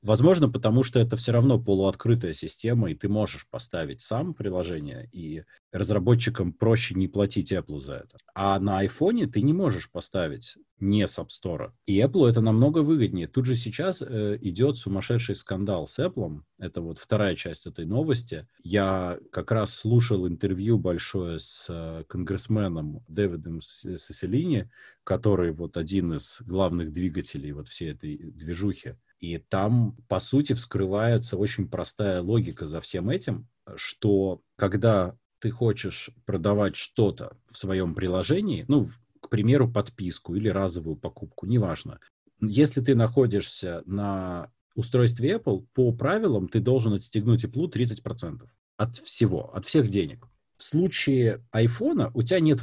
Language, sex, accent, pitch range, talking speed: Russian, male, native, 95-120 Hz, 140 wpm